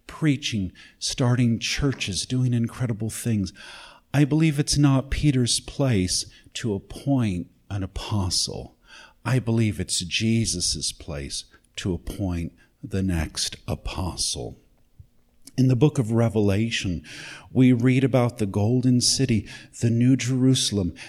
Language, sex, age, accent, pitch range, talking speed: English, male, 50-69, American, 95-125 Hz, 115 wpm